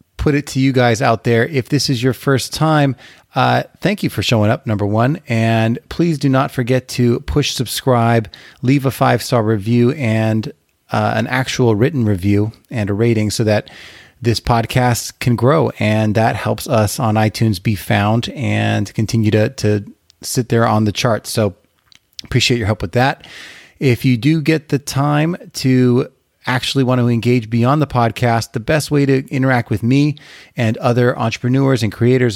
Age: 30-49